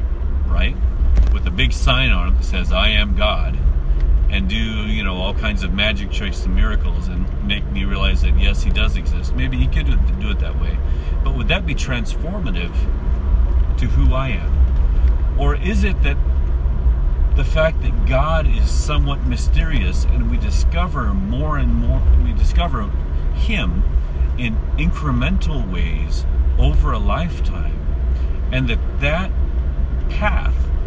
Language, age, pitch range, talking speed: English, 40-59, 65-75 Hz, 150 wpm